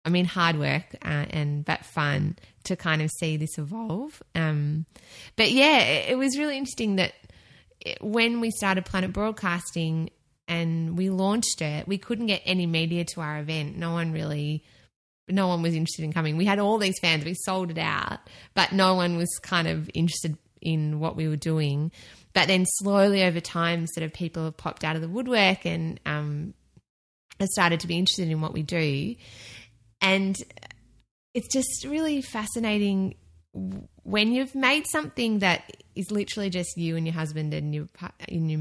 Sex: female